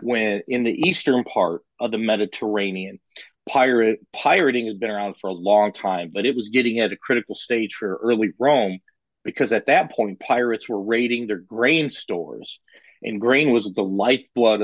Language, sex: English, male